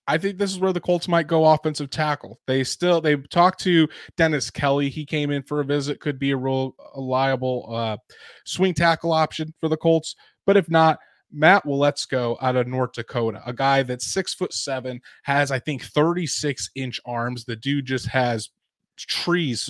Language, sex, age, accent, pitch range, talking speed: English, male, 20-39, American, 125-160 Hz, 195 wpm